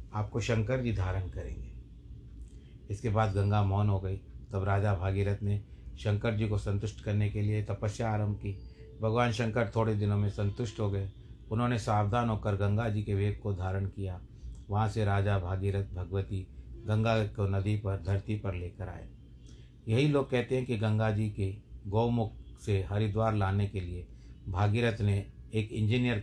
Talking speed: 170 wpm